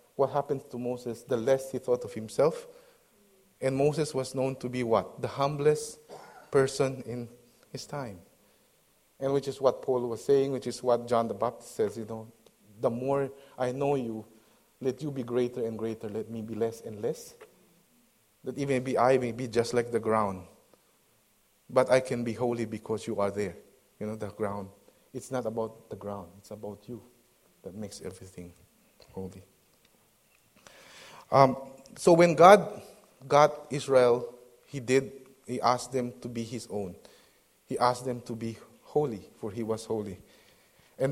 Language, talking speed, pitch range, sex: English, 170 wpm, 115-140 Hz, male